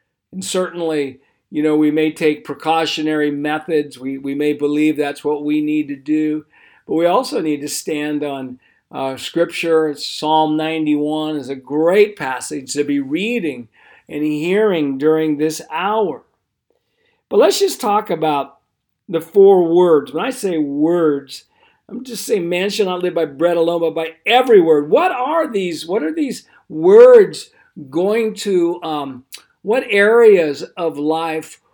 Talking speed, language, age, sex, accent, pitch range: 155 wpm, English, 50-69, male, American, 155-195 Hz